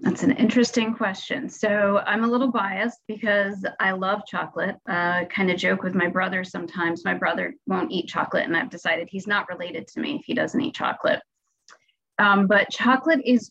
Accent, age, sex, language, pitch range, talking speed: American, 30-49, female, English, 185-225 Hz, 190 wpm